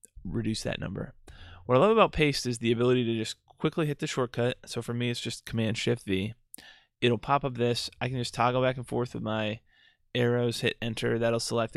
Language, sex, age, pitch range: English, male, 20-39, 105-120 Hz